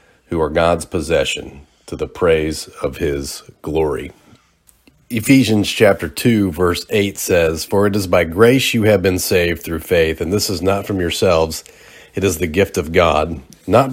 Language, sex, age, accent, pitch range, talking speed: English, male, 40-59, American, 80-105 Hz, 170 wpm